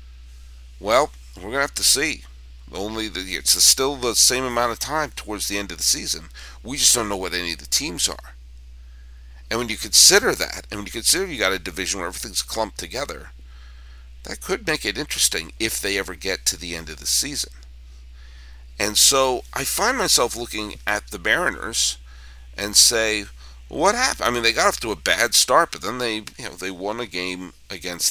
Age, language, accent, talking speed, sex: 50-69, English, American, 205 wpm, male